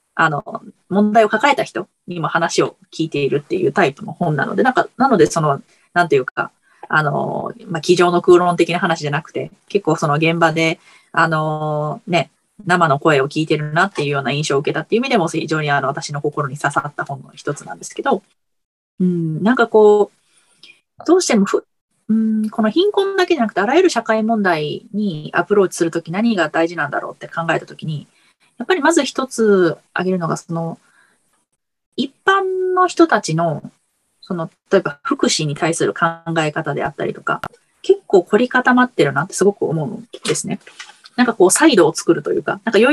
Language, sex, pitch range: Japanese, female, 165-270 Hz